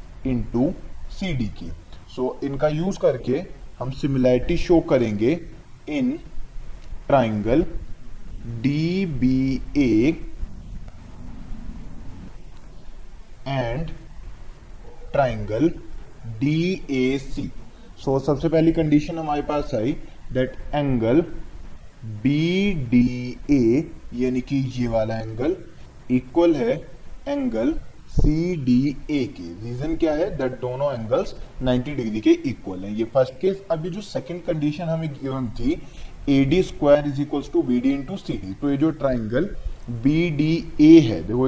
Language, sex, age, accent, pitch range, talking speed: Hindi, male, 20-39, native, 125-160 Hz, 65 wpm